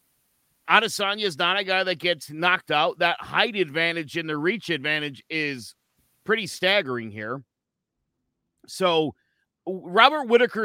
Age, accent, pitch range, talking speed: 50-69, American, 155-220 Hz, 130 wpm